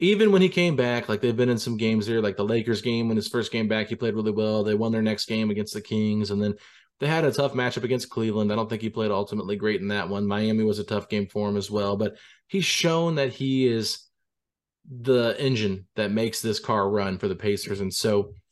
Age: 30-49